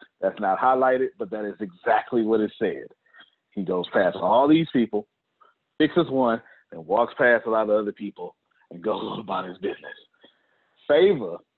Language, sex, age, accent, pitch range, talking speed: English, male, 40-59, American, 105-150 Hz, 165 wpm